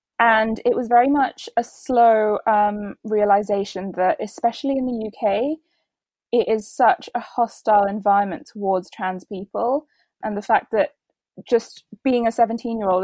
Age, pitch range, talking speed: 10-29, 200-240 Hz, 145 wpm